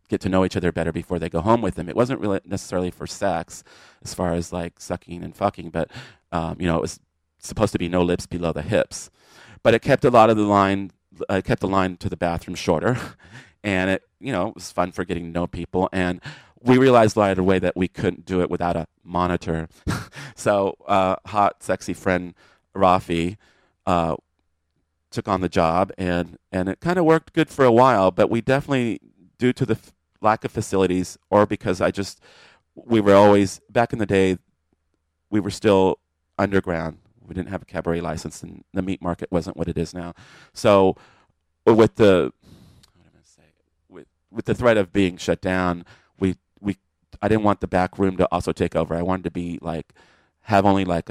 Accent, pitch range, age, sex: American, 85-100 Hz, 30-49, male